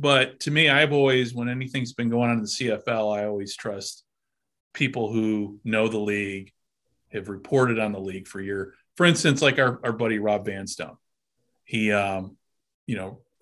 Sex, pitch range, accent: male, 110-135 Hz, American